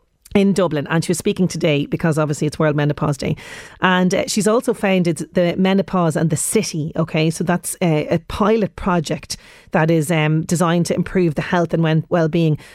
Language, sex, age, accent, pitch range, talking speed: English, female, 30-49, Irish, 160-195 Hz, 185 wpm